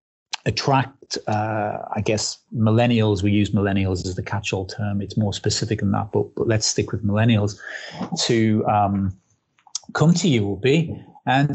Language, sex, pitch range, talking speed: English, male, 105-120 Hz, 160 wpm